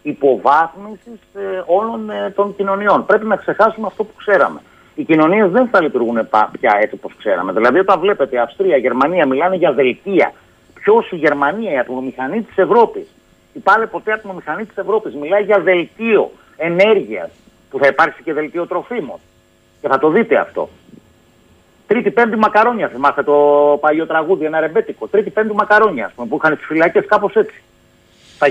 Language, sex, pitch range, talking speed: Greek, male, 155-250 Hz, 160 wpm